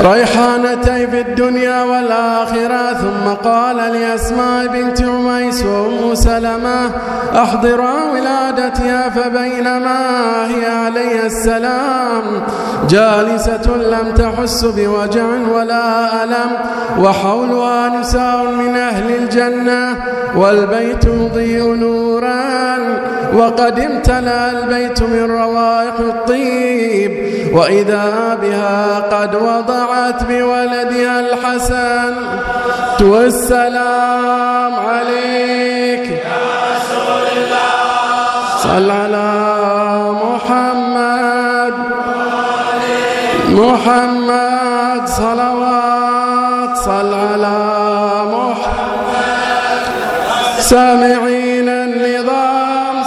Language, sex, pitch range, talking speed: Arabic, male, 230-245 Hz, 65 wpm